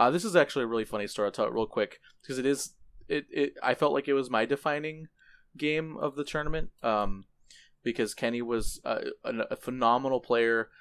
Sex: male